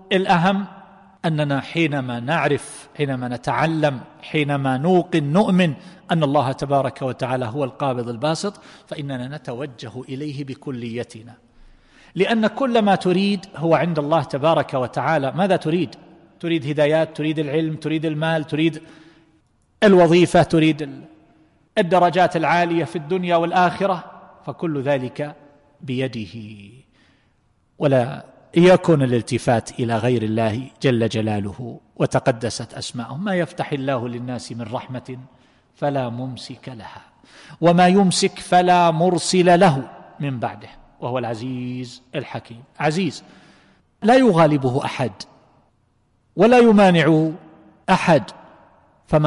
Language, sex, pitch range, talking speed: Arabic, male, 130-175 Hz, 105 wpm